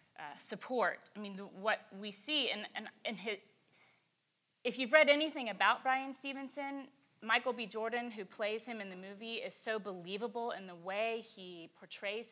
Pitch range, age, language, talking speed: 185-235 Hz, 30-49, English, 160 wpm